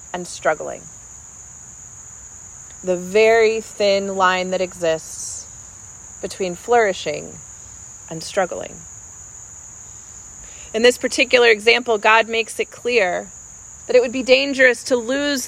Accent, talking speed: American, 105 wpm